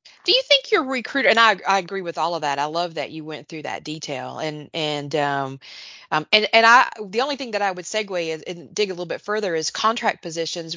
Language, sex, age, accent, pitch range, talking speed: English, female, 30-49, American, 170-220 Hz, 250 wpm